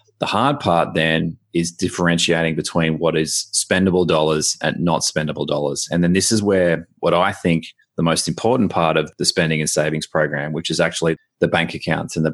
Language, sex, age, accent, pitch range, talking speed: English, male, 30-49, Australian, 80-90 Hz, 200 wpm